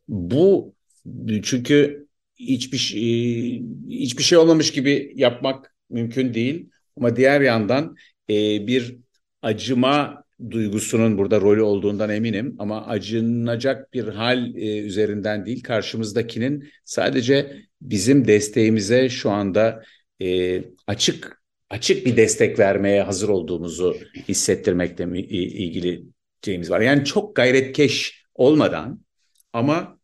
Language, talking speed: Turkish, 100 wpm